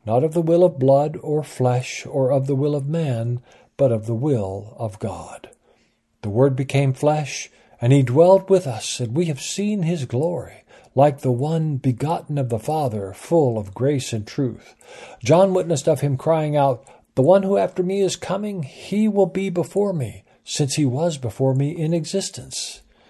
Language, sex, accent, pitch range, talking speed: English, male, American, 115-160 Hz, 185 wpm